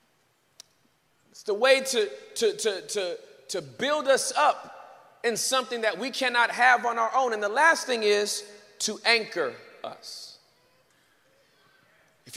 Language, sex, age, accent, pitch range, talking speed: English, male, 40-59, American, 235-320 Hz, 135 wpm